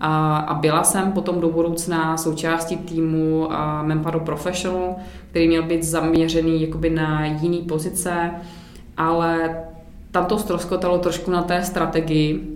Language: Czech